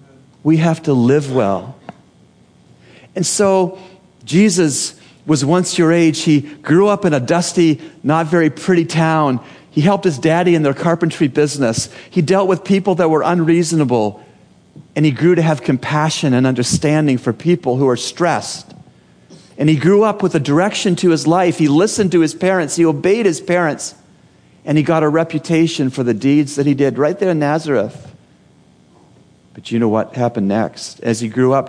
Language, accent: English, American